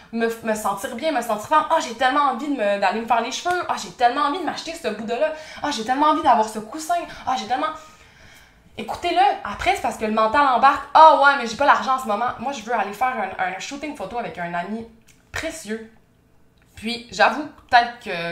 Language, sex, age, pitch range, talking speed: French, female, 20-39, 205-285 Hz, 250 wpm